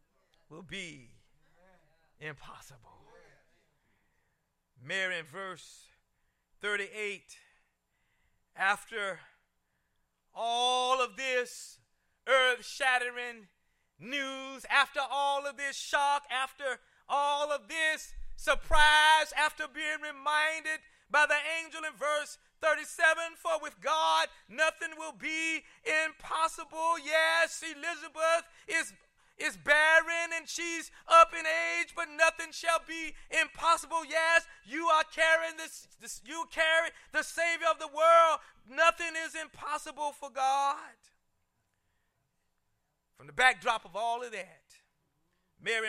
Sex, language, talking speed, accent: male, English, 105 wpm, American